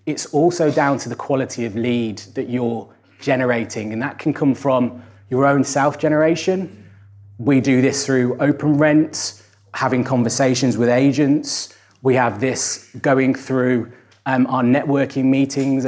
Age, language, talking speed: 20-39, English, 145 wpm